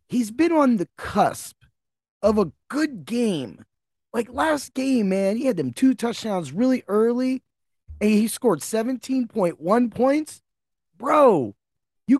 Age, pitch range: 30-49, 180-255 Hz